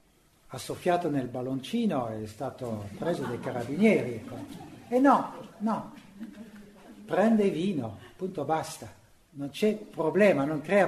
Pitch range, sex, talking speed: 145-190 Hz, male, 120 wpm